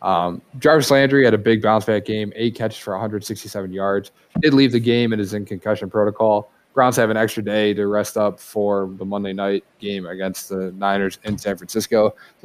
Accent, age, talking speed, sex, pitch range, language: American, 20-39, 205 wpm, male, 100-120 Hz, English